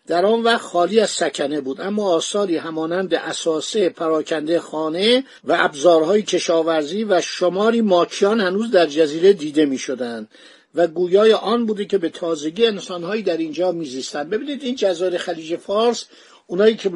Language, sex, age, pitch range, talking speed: Persian, male, 50-69, 165-220 Hz, 150 wpm